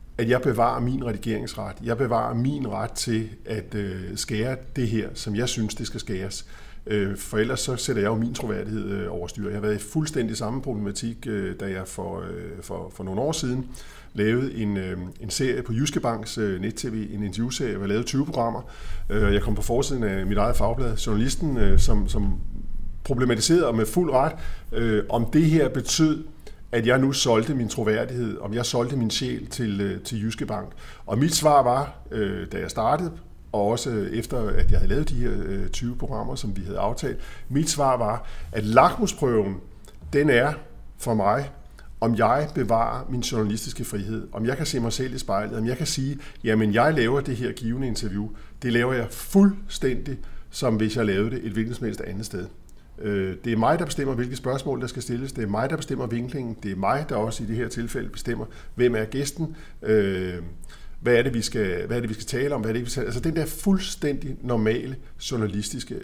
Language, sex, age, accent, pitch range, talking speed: Danish, male, 50-69, native, 105-130 Hz, 195 wpm